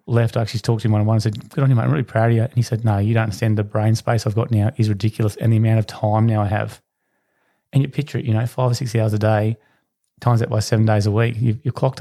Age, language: 30-49, English